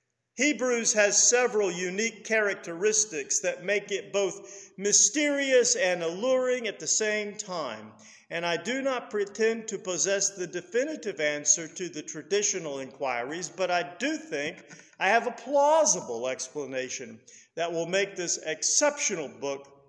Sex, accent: male, American